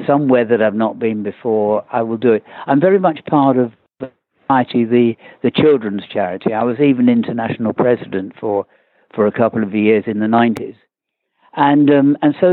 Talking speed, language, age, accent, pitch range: 185 wpm, English, 60-79, British, 115-135 Hz